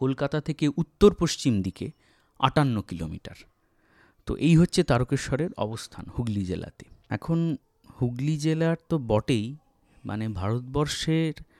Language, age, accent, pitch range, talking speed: Bengali, 30-49, native, 100-135 Hz, 90 wpm